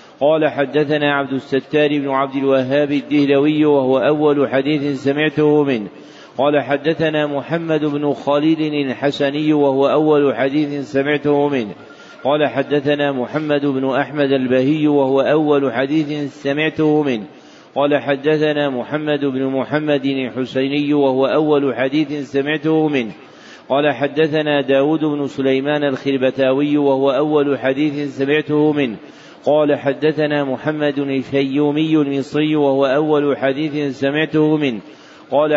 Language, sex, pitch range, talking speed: Arabic, male, 135-150 Hz, 115 wpm